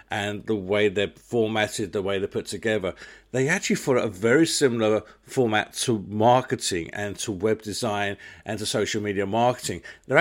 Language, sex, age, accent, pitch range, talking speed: English, male, 50-69, British, 105-125 Hz, 170 wpm